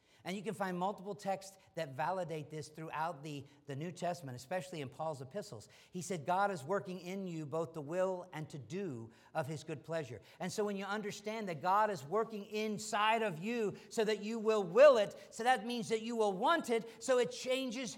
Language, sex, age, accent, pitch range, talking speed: English, male, 50-69, American, 150-210 Hz, 215 wpm